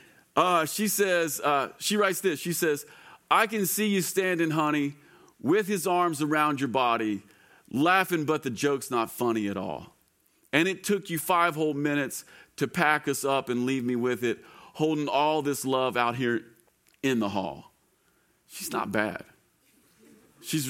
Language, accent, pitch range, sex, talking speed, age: English, American, 110-155 Hz, male, 170 wpm, 40-59